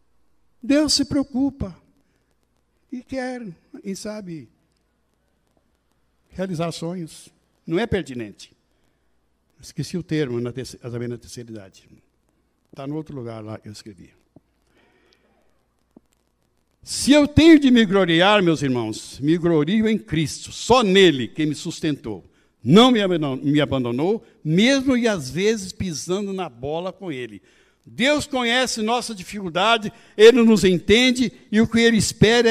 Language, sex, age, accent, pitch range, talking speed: Portuguese, male, 60-79, Brazilian, 150-235 Hz, 125 wpm